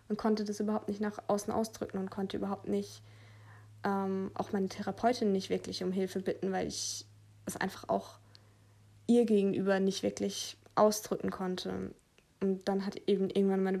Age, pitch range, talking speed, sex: 20-39, 180-210 Hz, 165 wpm, female